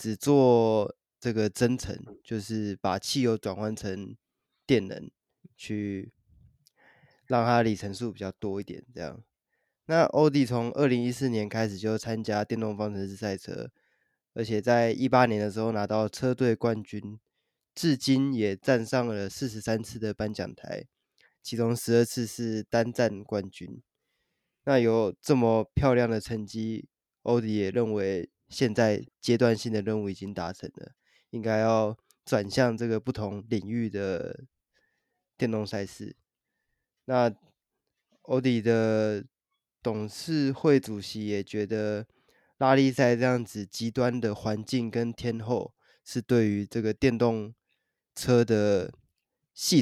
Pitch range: 105-120 Hz